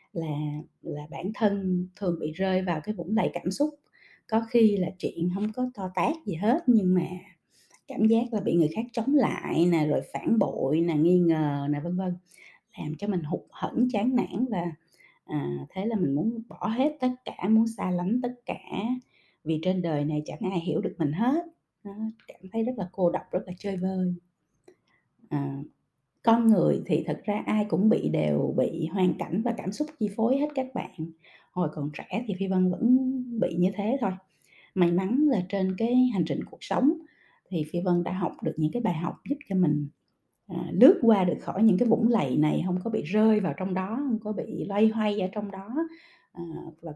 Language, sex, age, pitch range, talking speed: Vietnamese, female, 20-39, 170-230 Hz, 210 wpm